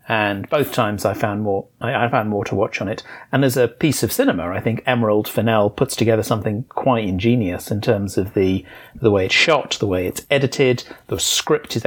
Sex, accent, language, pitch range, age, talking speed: male, British, English, 110-135 Hz, 40-59, 215 wpm